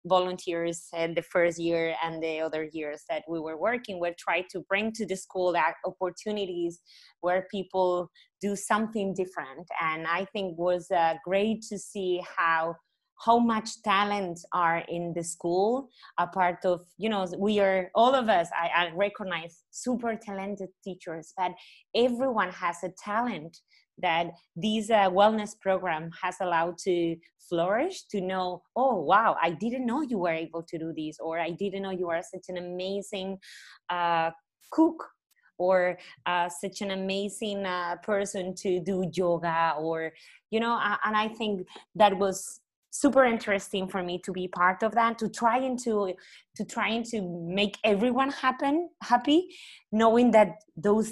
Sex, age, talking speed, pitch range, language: female, 20-39, 165 wpm, 175-210 Hz, English